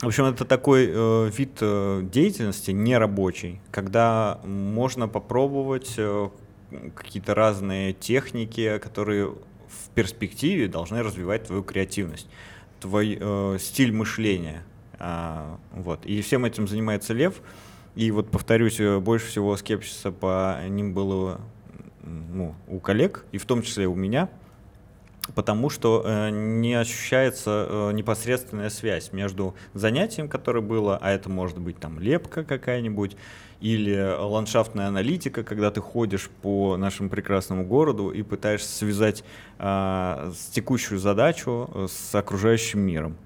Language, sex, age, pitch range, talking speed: Russian, male, 20-39, 95-115 Hz, 120 wpm